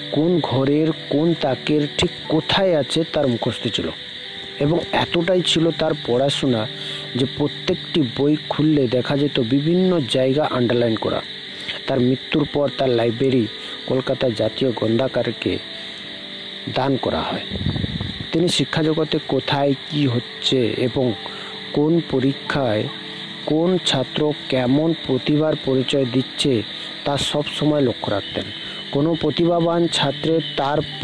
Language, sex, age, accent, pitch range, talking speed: Hindi, male, 50-69, native, 130-155 Hz, 70 wpm